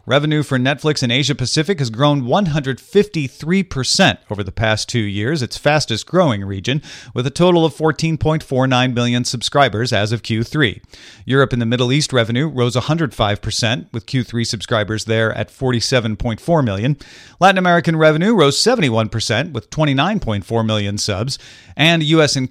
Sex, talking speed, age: male, 140 wpm, 40-59